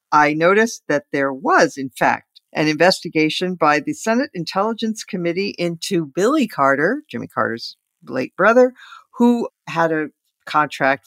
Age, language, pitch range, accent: 50-69, English, 145-195 Hz, American